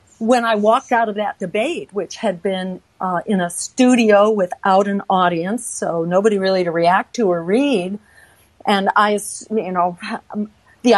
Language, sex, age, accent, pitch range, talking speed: English, female, 50-69, American, 190-230 Hz, 165 wpm